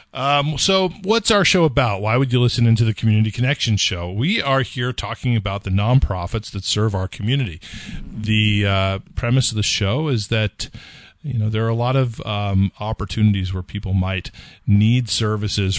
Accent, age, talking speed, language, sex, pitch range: American, 40-59, 180 wpm, English, male, 95-120 Hz